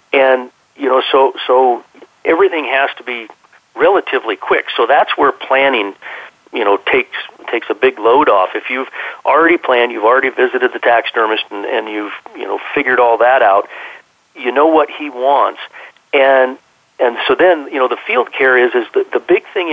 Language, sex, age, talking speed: English, male, 50-69, 185 wpm